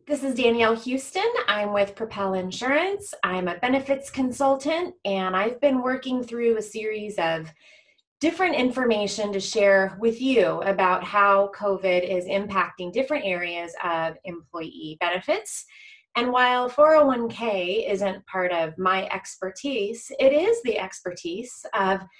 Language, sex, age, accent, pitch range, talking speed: English, female, 20-39, American, 185-260 Hz, 130 wpm